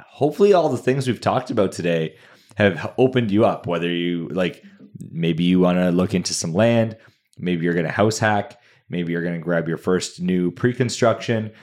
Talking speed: 195 wpm